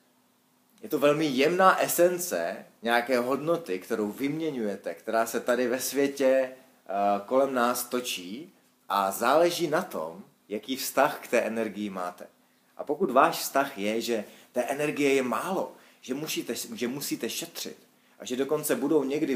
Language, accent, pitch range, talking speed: Czech, native, 115-135 Hz, 145 wpm